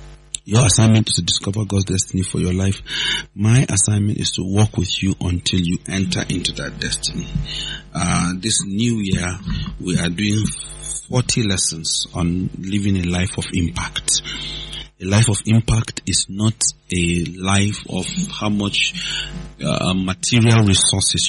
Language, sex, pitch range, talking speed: English, male, 90-115 Hz, 145 wpm